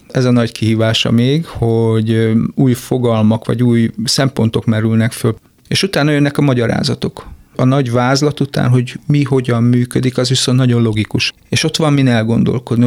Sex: male